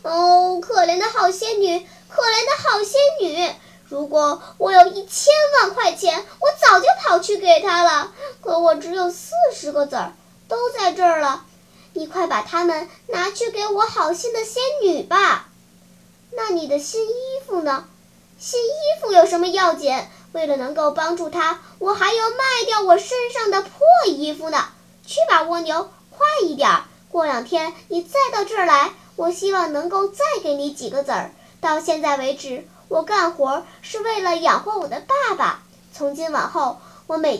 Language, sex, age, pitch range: Chinese, male, 10-29, 290-390 Hz